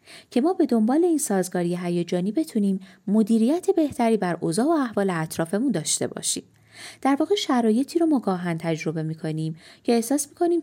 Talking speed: 150 wpm